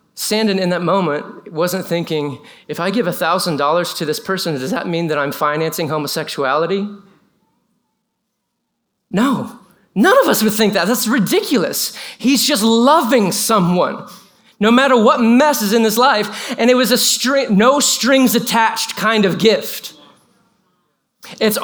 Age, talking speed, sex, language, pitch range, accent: 30-49, 140 wpm, male, English, 200-240 Hz, American